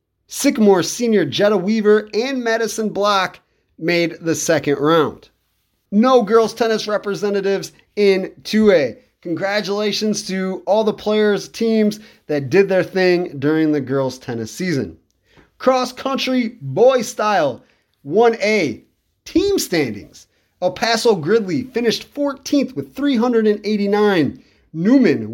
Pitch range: 165-230 Hz